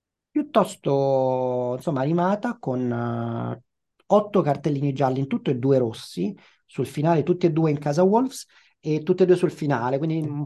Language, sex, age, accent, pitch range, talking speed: Italian, male, 30-49, native, 125-180 Hz, 165 wpm